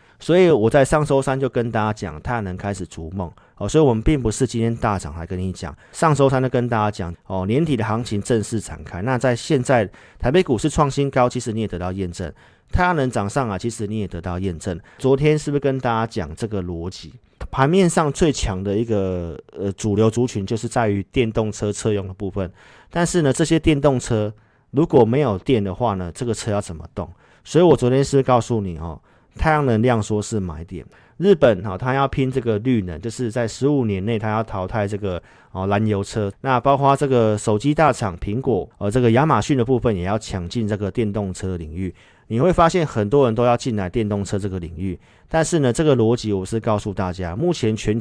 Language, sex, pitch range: Chinese, male, 100-130 Hz